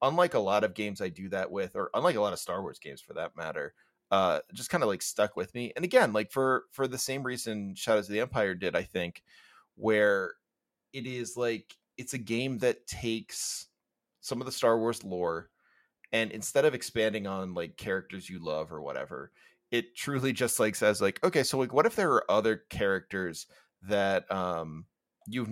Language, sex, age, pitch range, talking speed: English, male, 30-49, 95-130 Hz, 205 wpm